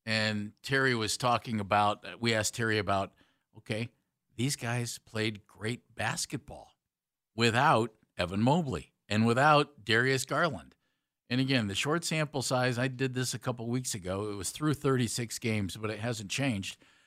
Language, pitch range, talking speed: English, 115-140 Hz, 155 wpm